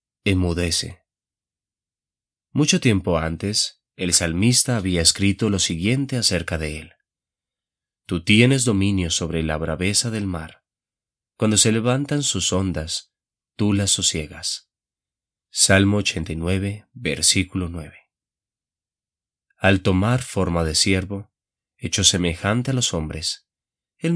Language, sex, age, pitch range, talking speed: Spanish, male, 30-49, 85-110 Hz, 110 wpm